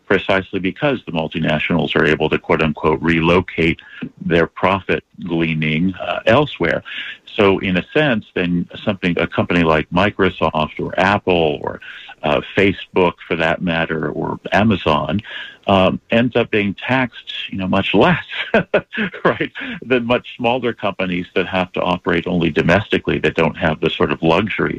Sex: male